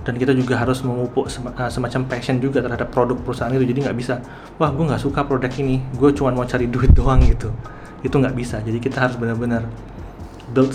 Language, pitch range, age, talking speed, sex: Indonesian, 115-130 Hz, 20-39, 205 wpm, male